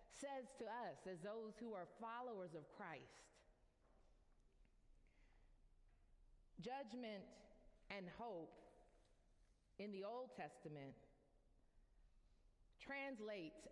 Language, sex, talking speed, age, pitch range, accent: English, female, 80 wpm, 40-59, 185-235 Hz, American